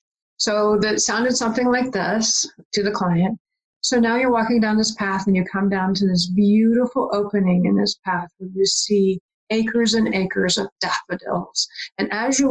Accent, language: American, English